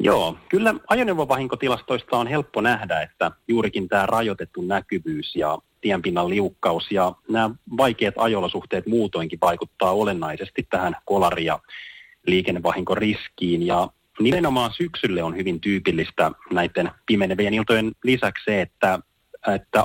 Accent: native